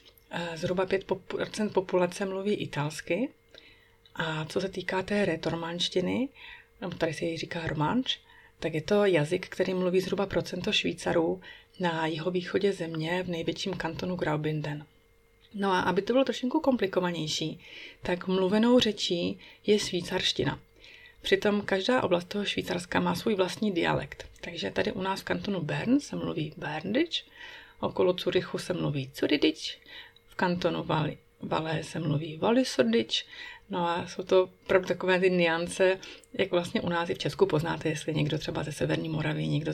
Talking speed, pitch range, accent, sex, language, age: 150 wpm, 165-195 Hz, native, female, Czech, 30-49